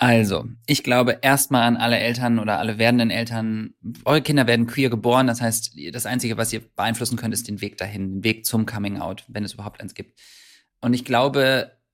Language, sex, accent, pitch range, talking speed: German, male, German, 115-130 Hz, 200 wpm